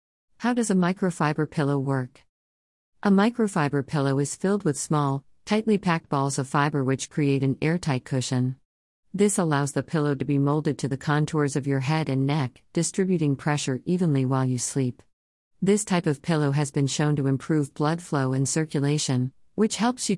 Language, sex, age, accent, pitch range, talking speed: English, female, 50-69, American, 135-165 Hz, 180 wpm